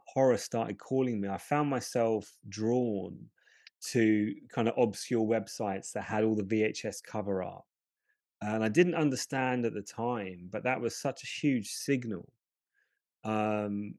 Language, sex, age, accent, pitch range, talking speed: English, male, 30-49, British, 110-135 Hz, 150 wpm